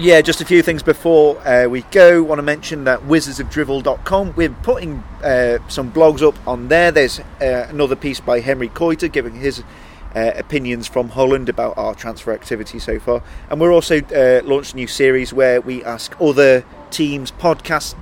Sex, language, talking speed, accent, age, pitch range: male, English, 185 wpm, British, 30-49, 120-145 Hz